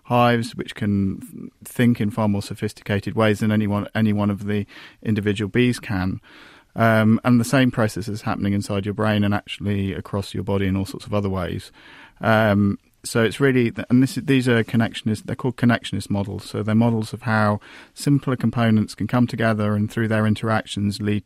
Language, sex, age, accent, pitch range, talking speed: English, male, 40-59, British, 100-115 Hz, 190 wpm